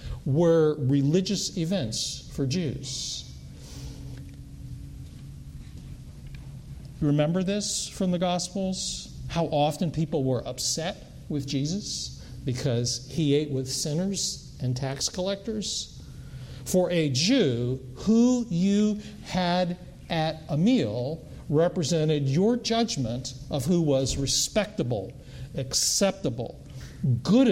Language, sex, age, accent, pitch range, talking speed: English, male, 50-69, American, 130-175 Hz, 95 wpm